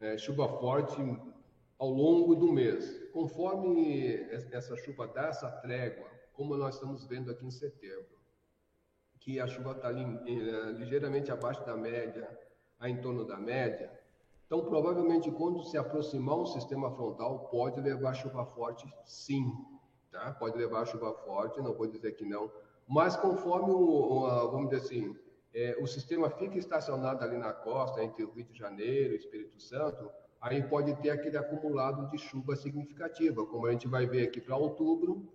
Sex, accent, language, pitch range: male, Brazilian, Portuguese, 120-160 Hz